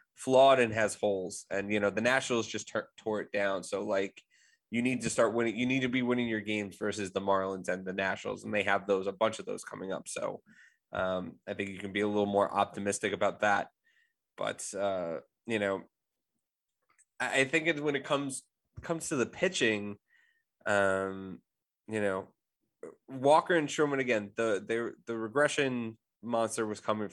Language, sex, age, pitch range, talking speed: English, male, 20-39, 100-120 Hz, 185 wpm